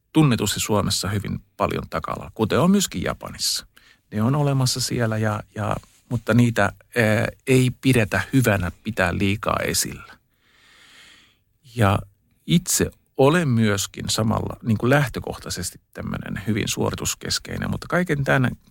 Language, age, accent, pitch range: Finnish, 50-69, native, 100-120 Hz